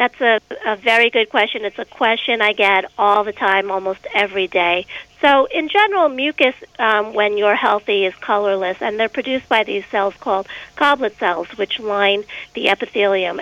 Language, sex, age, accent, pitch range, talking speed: English, female, 50-69, American, 200-245 Hz, 180 wpm